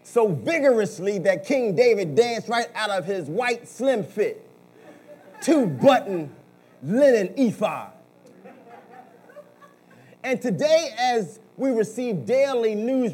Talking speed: 105 wpm